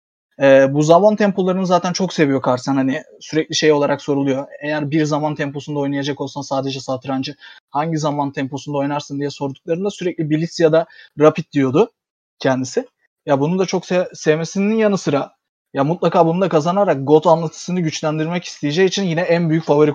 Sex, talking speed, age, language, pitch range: male, 170 wpm, 30-49, Turkish, 145-175 Hz